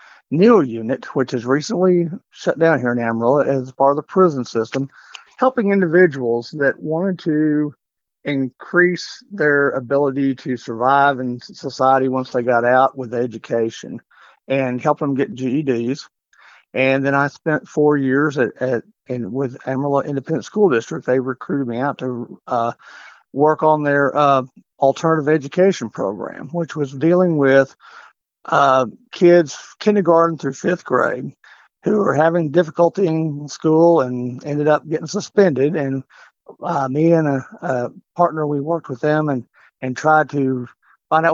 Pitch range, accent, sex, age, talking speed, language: 130-160 Hz, American, male, 50-69, 150 wpm, English